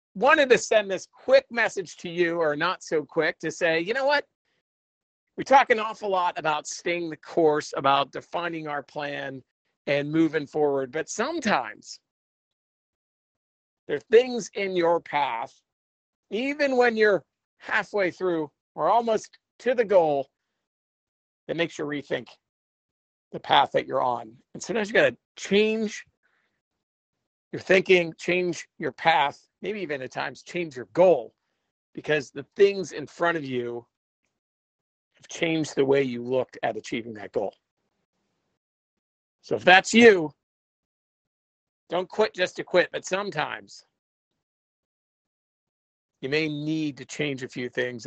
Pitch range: 130-190 Hz